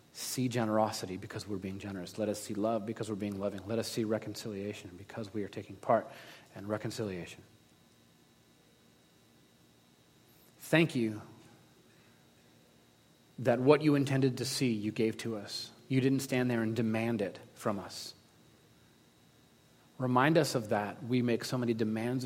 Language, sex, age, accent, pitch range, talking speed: English, male, 40-59, American, 100-125 Hz, 150 wpm